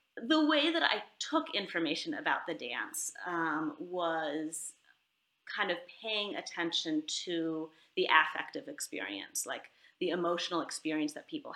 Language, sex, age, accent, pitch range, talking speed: English, female, 30-49, American, 165-210 Hz, 130 wpm